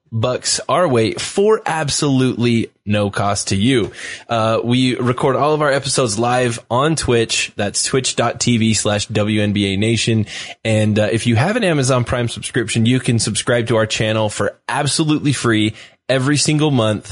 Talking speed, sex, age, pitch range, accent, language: 160 wpm, male, 20-39, 100-125 Hz, American, English